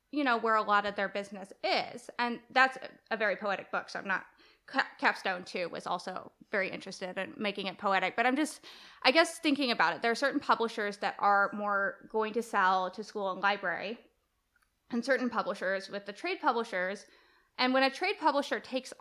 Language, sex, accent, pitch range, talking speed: English, female, American, 200-270 Hz, 200 wpm